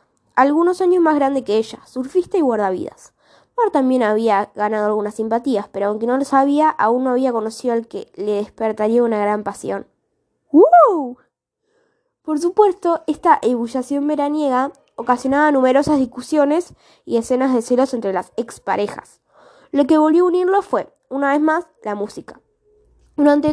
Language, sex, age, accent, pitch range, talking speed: Spanish, female, 10-29, Argentinian, 225-305 Hz, 150 wpm